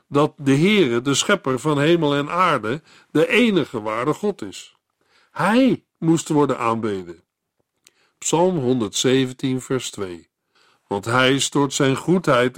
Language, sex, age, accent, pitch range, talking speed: Dutch, male, 50-69, Dutch, 130-170 Hz, 130 wpm